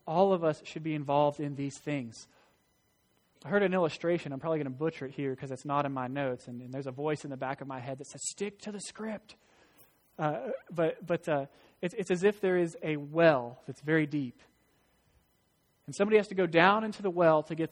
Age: 30-49